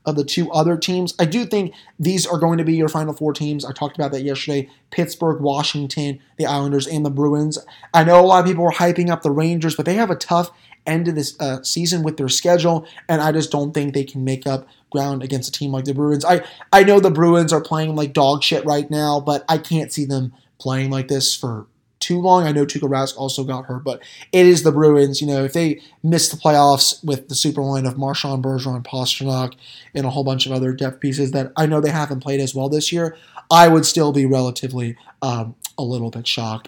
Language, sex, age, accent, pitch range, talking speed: English, male, 20-39, American, 140-170 Hz, 240 wpm